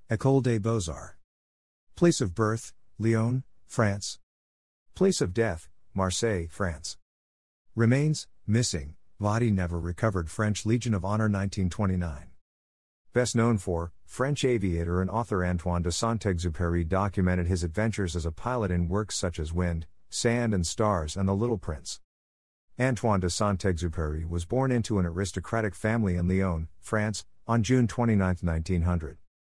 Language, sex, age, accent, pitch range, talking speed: English, male, 50-69, American, 85-110 Hz, 135 wpm